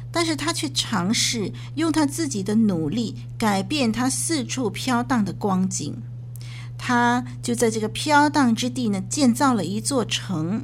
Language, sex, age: Chinese, female, 50-69